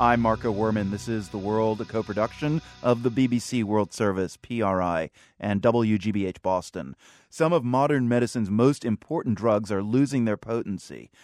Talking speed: 155 wpm